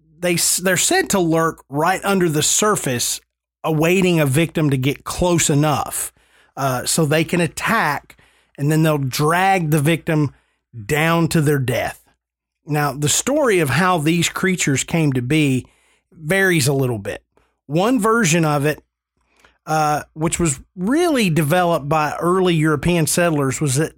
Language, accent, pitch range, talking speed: English, American, 145-180 Hz, 150 wpm